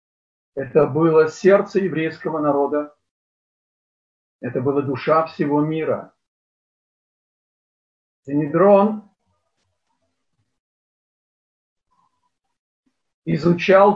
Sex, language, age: male, Russian, 50-69